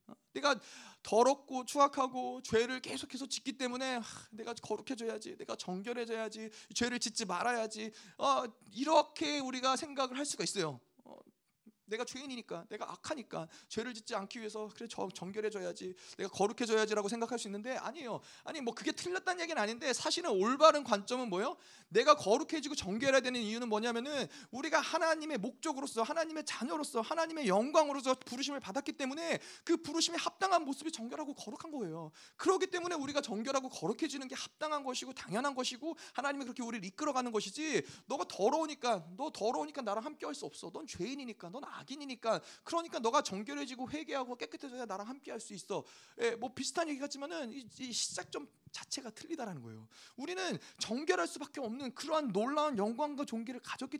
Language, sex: Korean, male